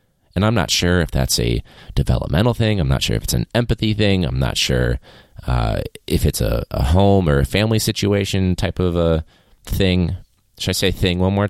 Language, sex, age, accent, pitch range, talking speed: English, male, 20-39, American, 85-110 Hz, 210 wpm